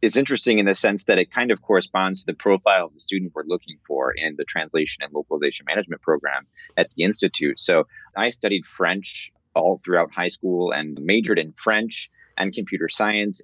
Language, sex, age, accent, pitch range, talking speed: English, male, 30-49, American, 85-105 Hz, 195 wpm